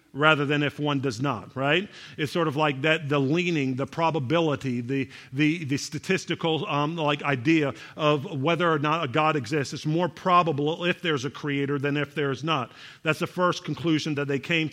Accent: American